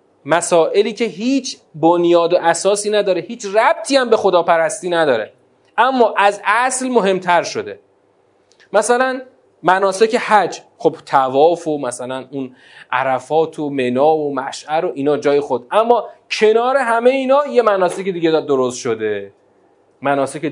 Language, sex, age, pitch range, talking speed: Persian, male, 30-49, 155-235 Hz, 130 wpm